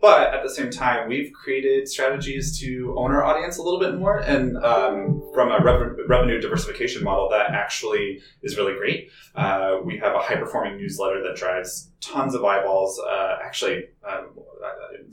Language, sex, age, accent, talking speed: English, male, 20-39, American, 170 wpm